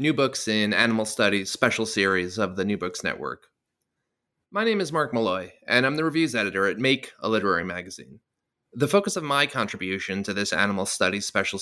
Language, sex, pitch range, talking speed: English, male, 105-145 Hz, 190 wpm